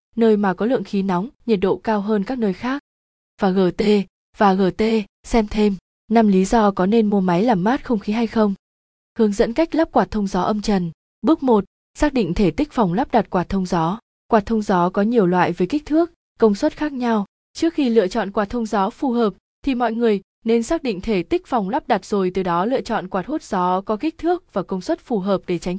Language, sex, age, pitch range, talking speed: Vietnamese, female, 20-39, 190-235 Hz, 240 wpm